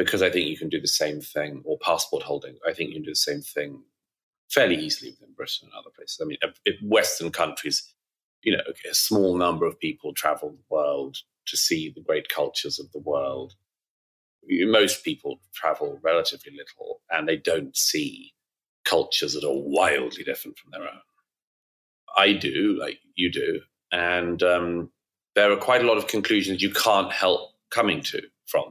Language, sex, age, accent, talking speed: English, male, 30-49, British, 180 wpm